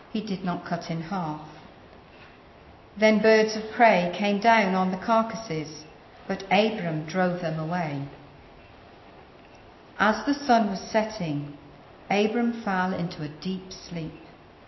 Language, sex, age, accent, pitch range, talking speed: English, female, 50-69, British, 155-215 Hz, 125 wpm